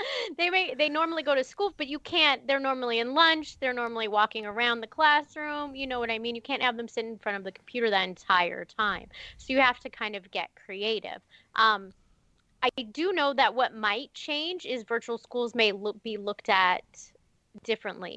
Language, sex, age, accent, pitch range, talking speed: English, female, 20-39, American, 200-260 Hz, 205 wpm